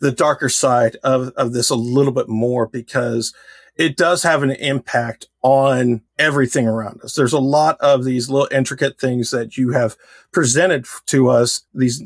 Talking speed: 175 wpm